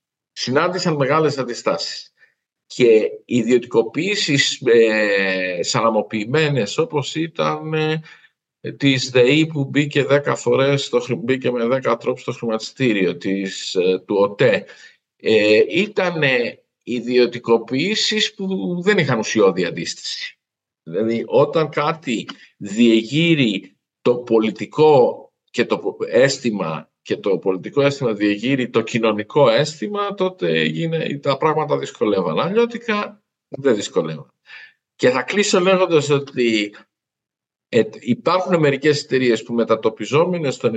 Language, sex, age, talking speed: Greek, male, 50-69, 95 wpm